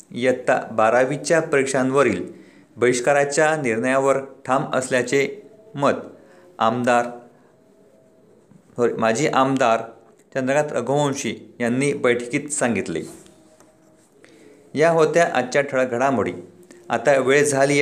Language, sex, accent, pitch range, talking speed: Marathi, male, native, 125-145 Hz, 75 wpm